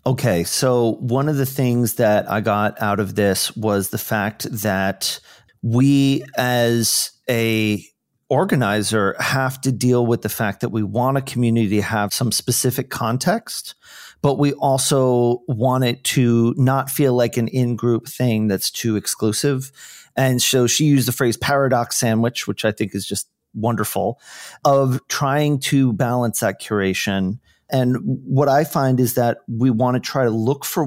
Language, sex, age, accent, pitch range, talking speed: English, male, 40-59, American, 110-135 Hz, 165 wpm